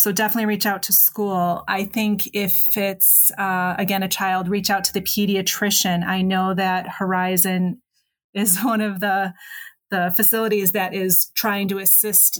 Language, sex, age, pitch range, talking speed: English, female, 30-49, 180-200 Hz, 165 wpm